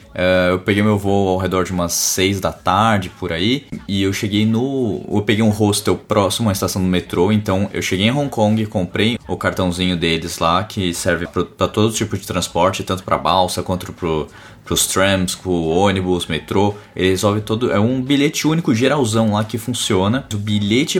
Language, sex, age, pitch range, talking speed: Portuguese, male, 20-39, 95-115 Hz, 200 wpm